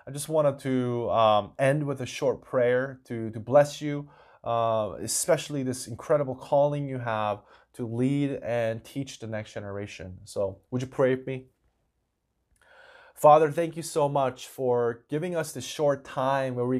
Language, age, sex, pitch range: Korean, 30-49, male, 120-150 Hz